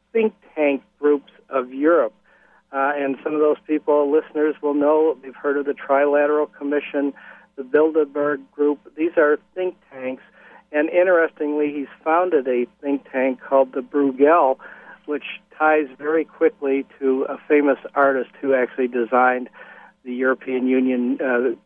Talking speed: 145 wpm